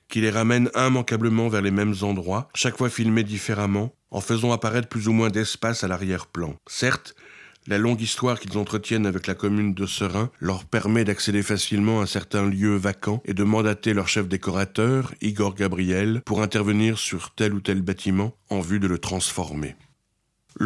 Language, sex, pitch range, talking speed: French, male, 100-115 Hz, 175 wpm